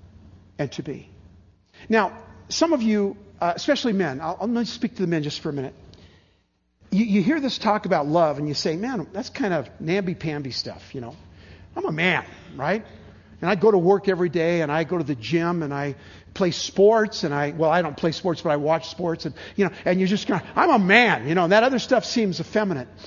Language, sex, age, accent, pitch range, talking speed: English, male, 50-69, American, 135-220 Hz, 235 wpm